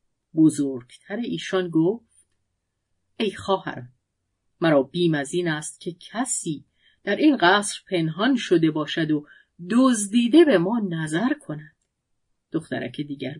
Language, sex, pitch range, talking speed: Persian, female, 150-215 Hz, 115 wpm